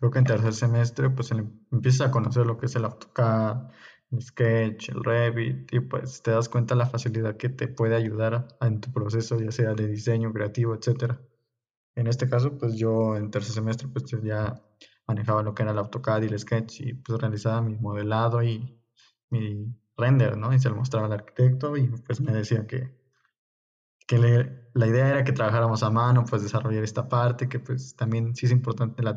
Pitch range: 110-125 Hz